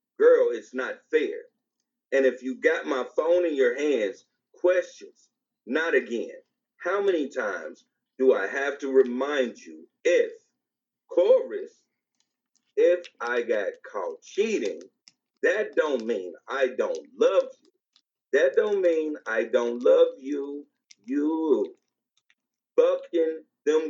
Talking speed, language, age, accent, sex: 125 wpm, English, 40-59, American, male